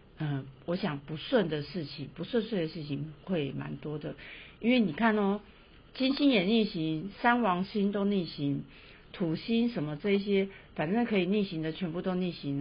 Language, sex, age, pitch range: Chinese, female, 50-69, 150-210 Hz